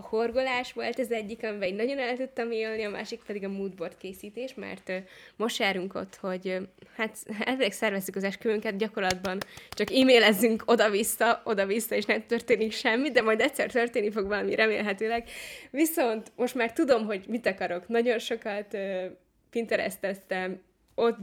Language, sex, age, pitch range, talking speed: Hungarian, female, 20-39, 195-230 Hz, 150 wpm